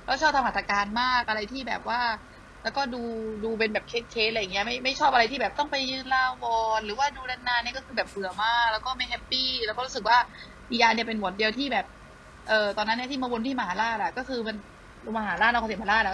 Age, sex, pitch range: 20-39, female, 205-250 Hz